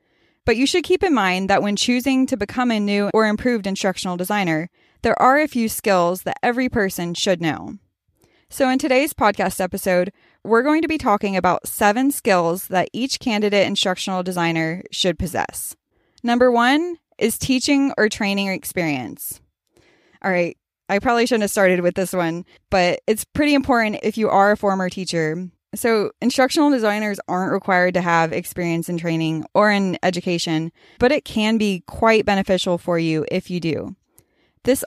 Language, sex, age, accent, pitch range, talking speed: English, female, 20-39, American, 180-230 Hz, 170 wpm